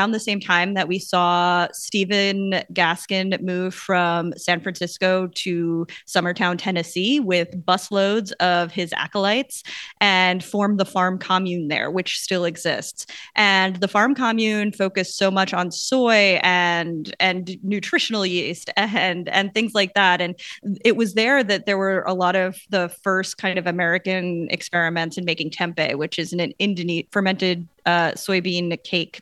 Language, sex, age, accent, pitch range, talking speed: English, female, 20-39, American, 175-205 Hz, 150 wpm